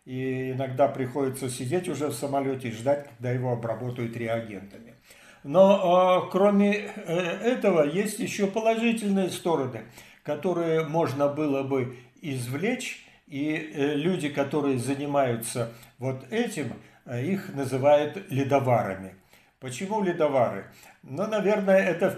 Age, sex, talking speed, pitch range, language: 60-79, male, 110 wpm, 130-170 Hz, Russian